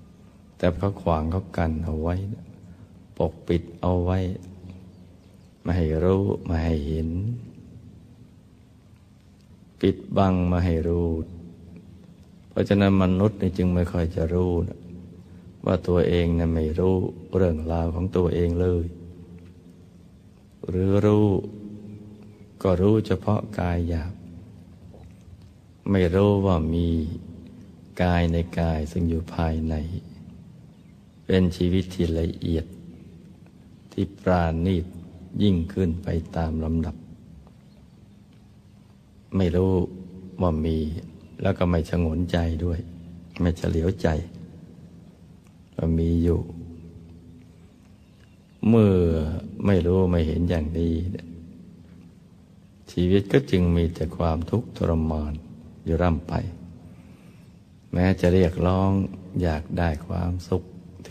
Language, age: Thai, 60-79